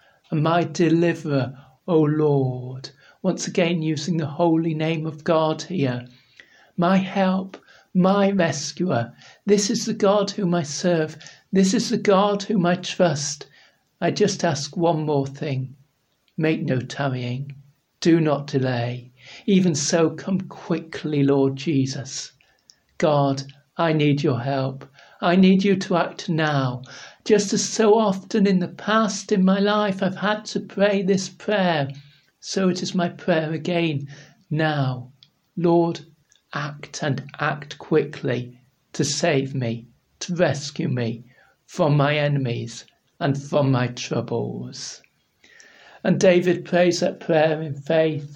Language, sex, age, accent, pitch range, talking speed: English, male, 60-79, British, 140-185 Hz, 135 wpm